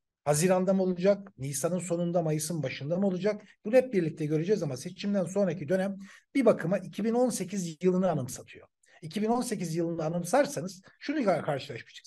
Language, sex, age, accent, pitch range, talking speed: Turkish, male, 60-79, native, 155-210 Hz, 135 wpm